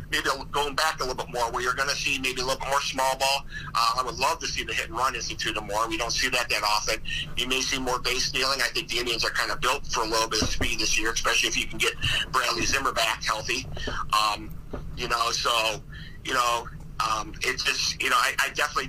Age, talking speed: 50-69, 250 wpm